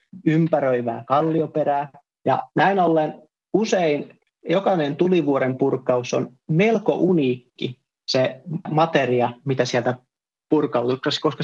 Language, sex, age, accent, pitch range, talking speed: Finnish, male, 30-49, native, 130-165 Hz, 95 wpm